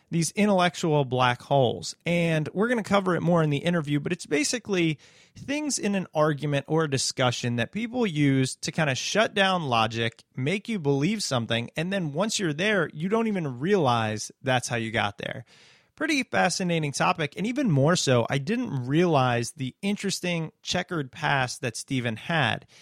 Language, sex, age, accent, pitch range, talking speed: English, male, 30-49, American, 135-185 Hz, 180 wpm